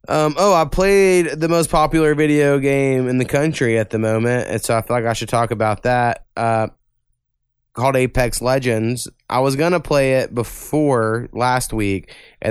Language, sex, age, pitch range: English, male, 20-39, 105-130 Hz